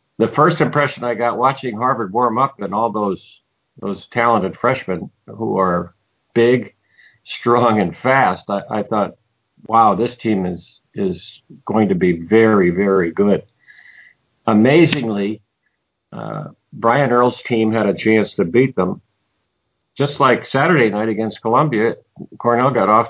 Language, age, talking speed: English, 50-69, 145 wpm